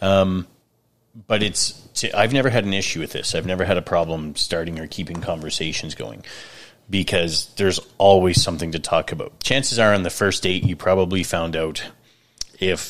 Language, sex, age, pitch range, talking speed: English, male, 30-49, 85-110 Hz, 175 wpm